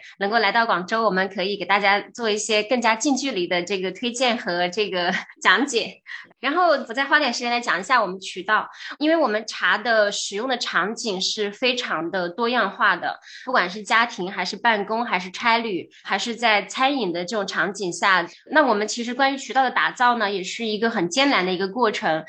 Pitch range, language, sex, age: 195-250 Hz, Chinese, female, 20-39